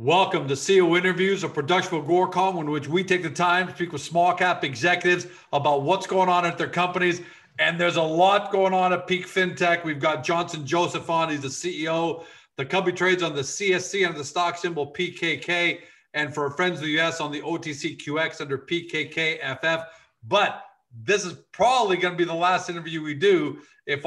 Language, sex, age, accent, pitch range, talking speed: English, male, 40-59, American, 145-175 Hz, 195 wpm